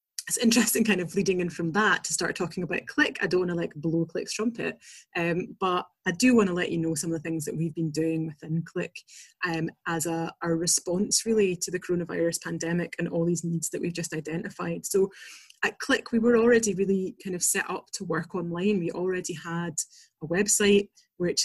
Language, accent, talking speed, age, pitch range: English, British, 220 wpm, 20-39, 170-205 Hz